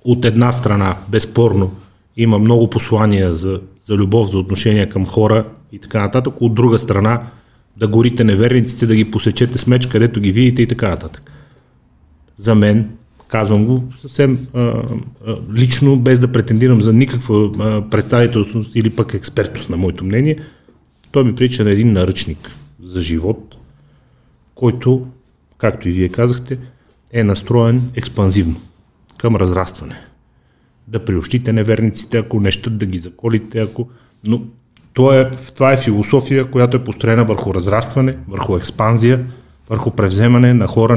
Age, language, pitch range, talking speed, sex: 30-49, Bulgarian, 105-120 Hz, 145 wpm, male